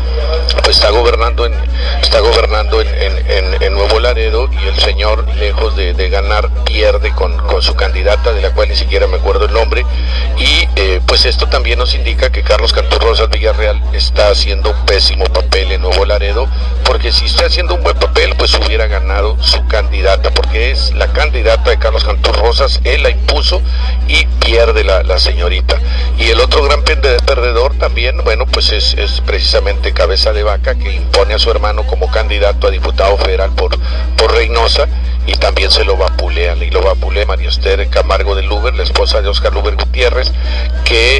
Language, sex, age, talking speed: English, male, 50-69, 185 wpm